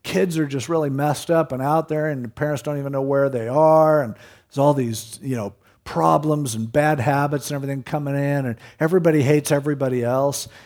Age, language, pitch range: 50-69, English, 120-150 Hz